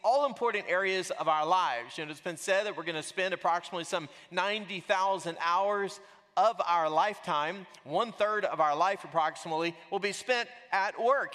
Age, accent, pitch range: 40-59, American, 180-220 Hz